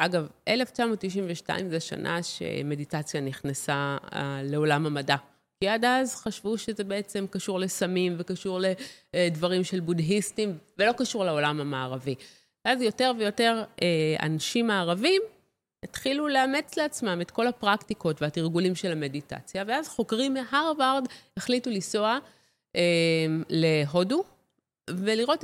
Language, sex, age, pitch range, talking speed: Hebrew, female, 30-49, 165-230 Hz, 105 wpm